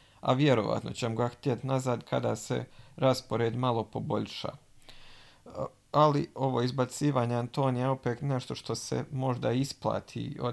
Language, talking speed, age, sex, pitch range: Croatian, 135 wpm, 40-59, male, 115-135 Hz